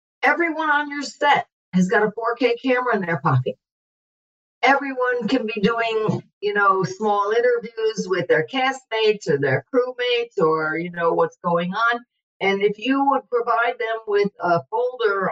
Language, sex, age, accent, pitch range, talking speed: English, female, 50-69, American, 175-235 Hz, 160 wpm